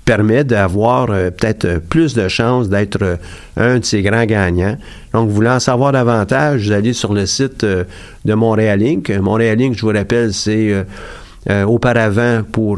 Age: 50-69